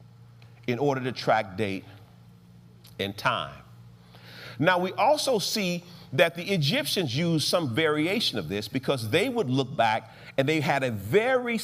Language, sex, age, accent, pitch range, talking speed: English, male, 40-59, American, 115-175 Hz, 150 wpm